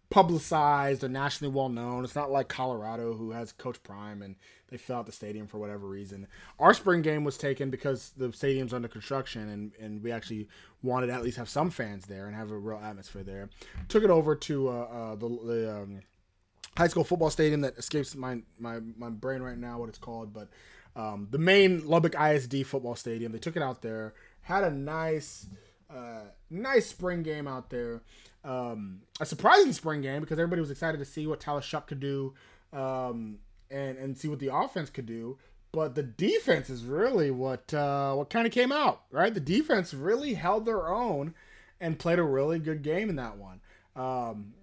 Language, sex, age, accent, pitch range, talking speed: English, male, 20-39, American, 115-155 Hz, 200 wpm